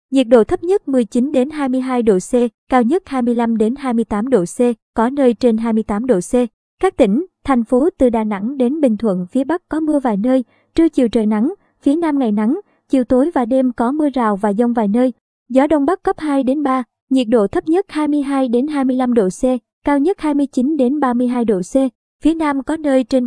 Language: Vietnamese